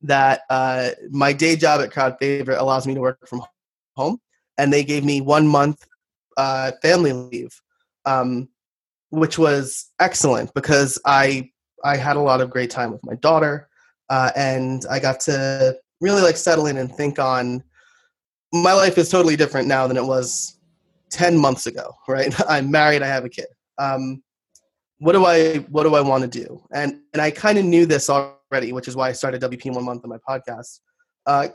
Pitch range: 130-160 Hz